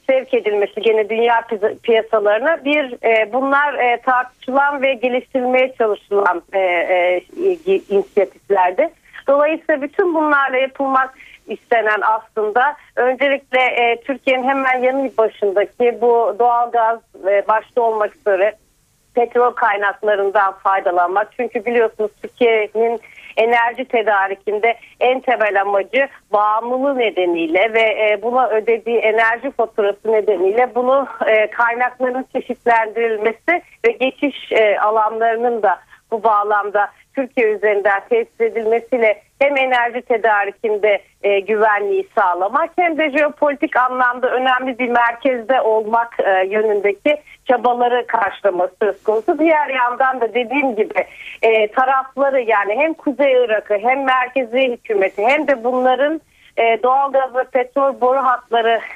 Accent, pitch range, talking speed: native, 215-260 Hz, 105 wpm